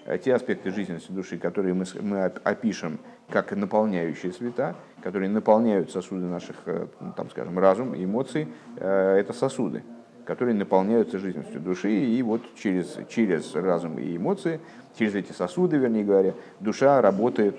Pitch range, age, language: 95-120 Hz, 50-69, Russian